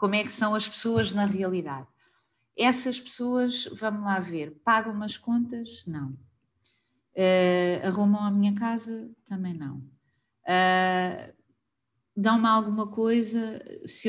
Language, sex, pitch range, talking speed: English, female, 185-225 Hz, 125 wpm